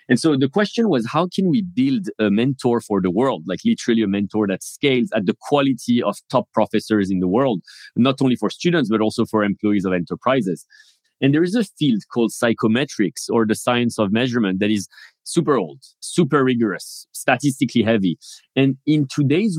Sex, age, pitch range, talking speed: male, 40-59, 110-140 Hz, 190 wpm